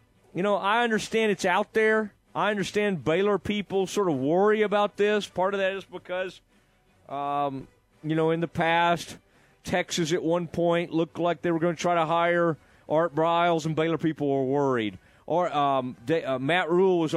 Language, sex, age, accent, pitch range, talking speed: English, male, 40-59, American, 135-175 Hz, 190 wpm